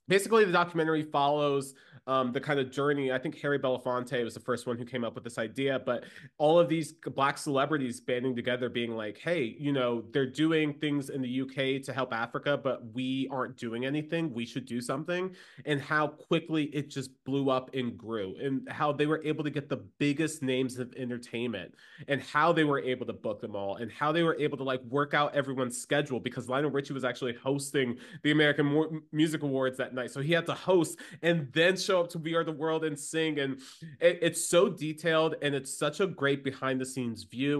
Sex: male